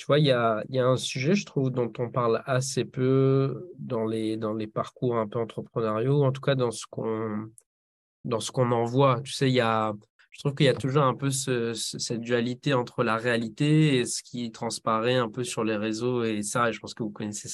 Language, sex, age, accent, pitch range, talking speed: French, male, 20-39, French, 115-140 Hz, 240 wpm